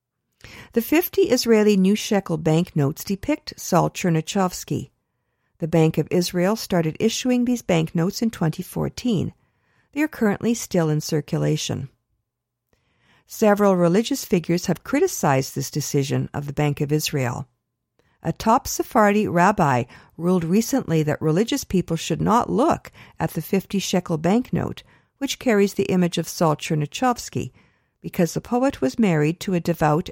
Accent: American